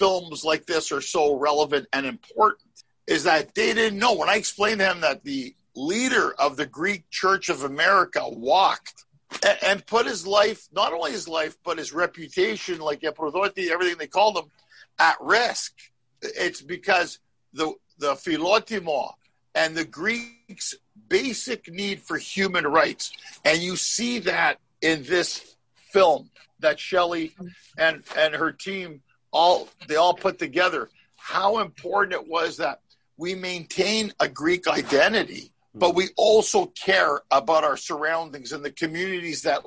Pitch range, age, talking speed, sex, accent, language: 160-215 Hz, 50-69, 150 wpm, male, American, English